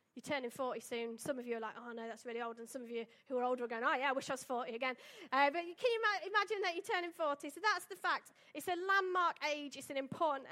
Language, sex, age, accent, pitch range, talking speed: English, female, 30-49, British, 245-325 Hz, 295 wpm